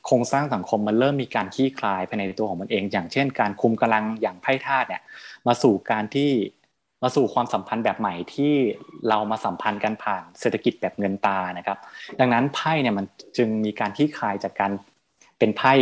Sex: male